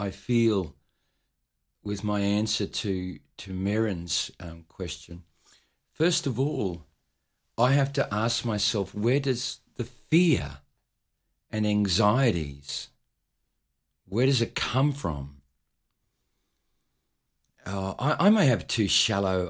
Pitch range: 85-125 Hz